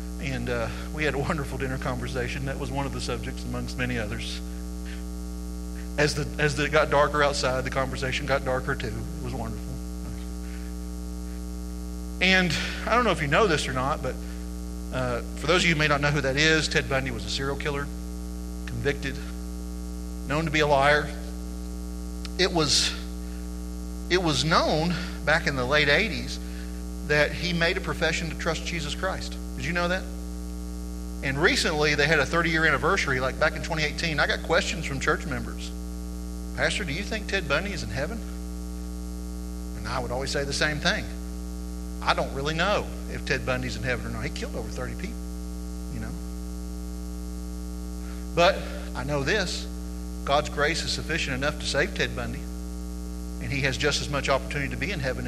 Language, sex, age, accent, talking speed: English, male, 40-59, American, 180 wpm